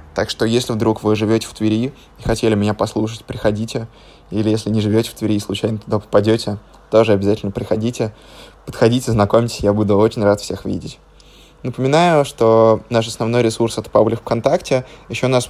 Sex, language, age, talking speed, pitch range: male, Russian, 20-39, 175 wpm, 105-125 Hz